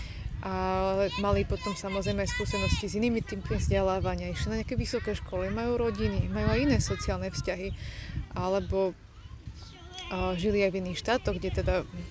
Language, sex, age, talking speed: Slovak, female, 20-39, 150 wpm